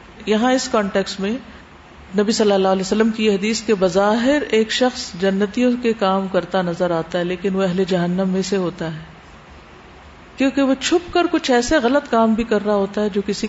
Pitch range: 185-235 Hz